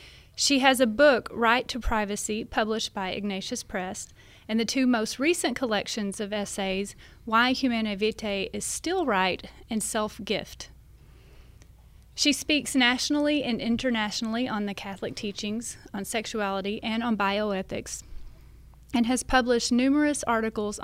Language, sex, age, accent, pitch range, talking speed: English, female, 30-49, American, 205-250 Hz, 130 wpm